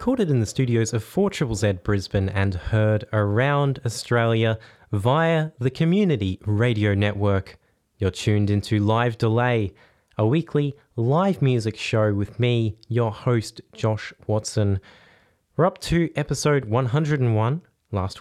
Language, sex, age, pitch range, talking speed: English, male, 20-39, 105-130 Hz, 130 wpm